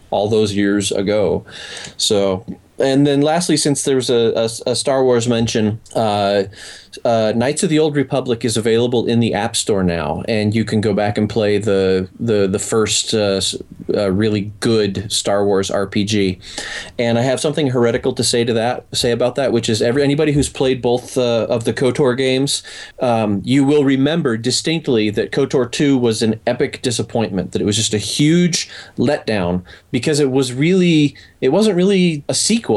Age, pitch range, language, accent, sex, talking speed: 30-49, 105-135 Hz, English, American, male, 185 wpm